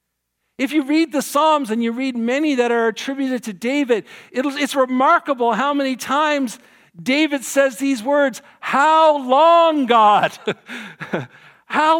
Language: English